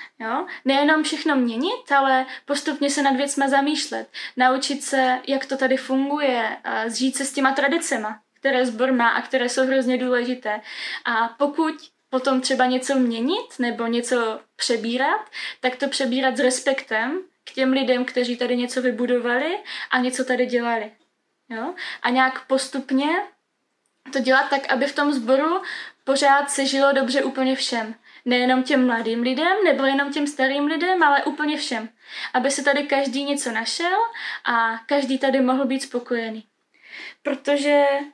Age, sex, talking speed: 10-29, female, 150 wpm